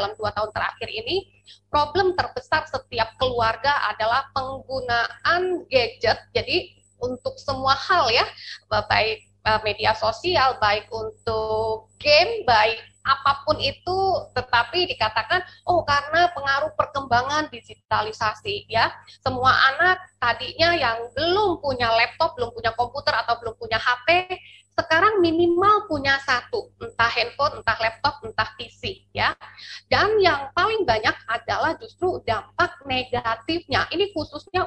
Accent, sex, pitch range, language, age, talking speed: native, female, 230-335 Hz, Indonesian, 20-39, 120 wpm